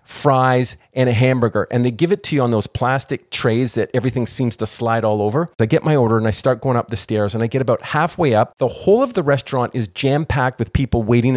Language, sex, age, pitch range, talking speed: English, male, 40-59, 115-140 Hz, 255 wpm